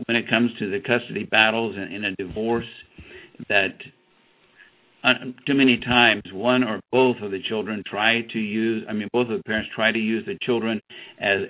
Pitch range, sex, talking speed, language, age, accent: 110-130 Hz, male, 190 wpm, English, 60-79, American